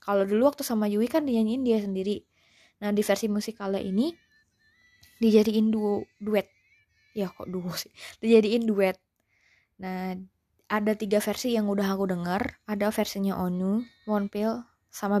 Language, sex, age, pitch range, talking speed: Indonesian, female, 20-39, 190-235 Hz, 140 wpm